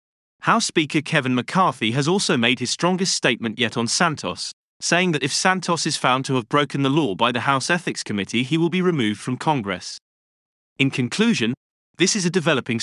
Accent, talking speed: British, 190 wpm